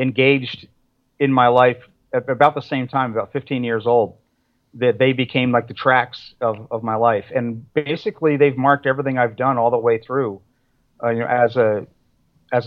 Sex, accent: male, American